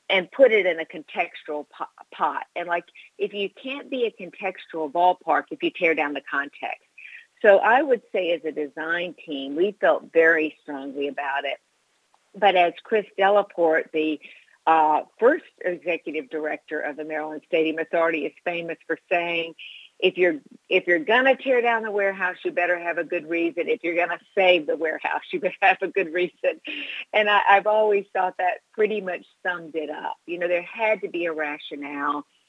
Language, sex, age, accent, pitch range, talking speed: English, female, 50-69, American, 155-200 Hz, 190 wpm